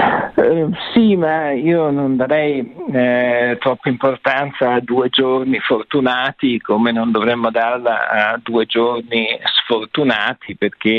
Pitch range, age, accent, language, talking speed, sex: 105-125 Hz, 50-69, native, Italian, 120 wpm, male